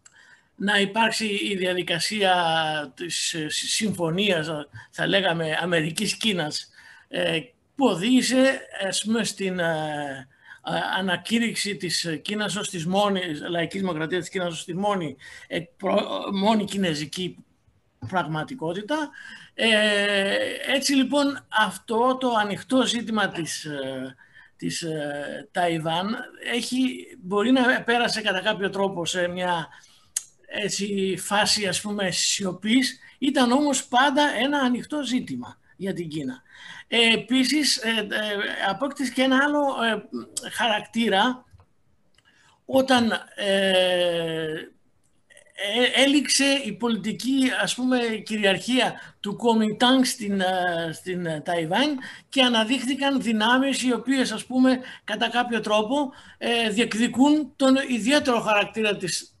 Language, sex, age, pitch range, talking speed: Greek, male, 50-69, 180-255 Hz, 85 wpm